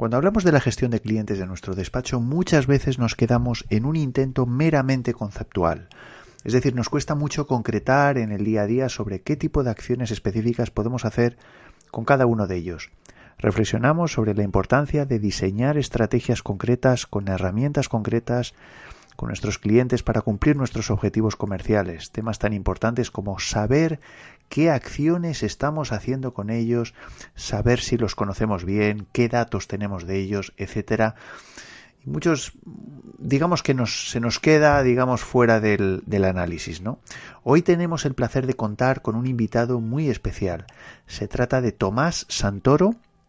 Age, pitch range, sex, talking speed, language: 30-49, 105-135 Hz, male, 155 wpm, Spanish